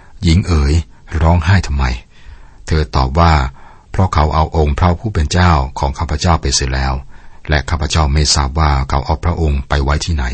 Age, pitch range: 60-79, 70-90 Hz